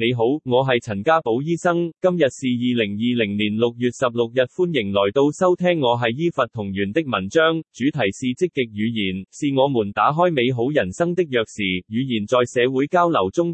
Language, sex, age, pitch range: Chinese, male, 20-39, 115-160 Hz